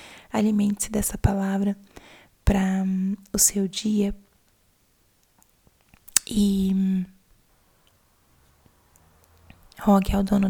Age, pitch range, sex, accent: 20-39, 195-210 Hz, female, Brazilian